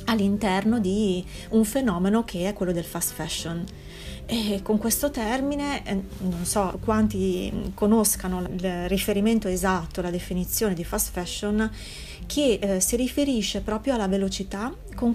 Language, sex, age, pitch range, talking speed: Italian, female, 30-49, 185-235 Hz, 130 wpm